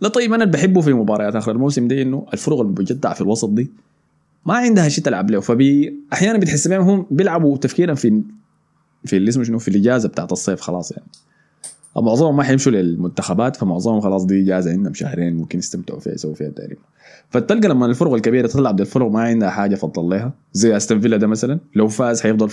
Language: Arabic